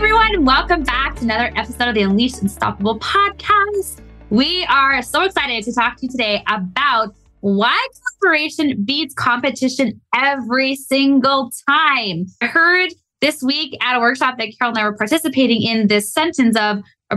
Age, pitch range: 20-39, 210-285 Hz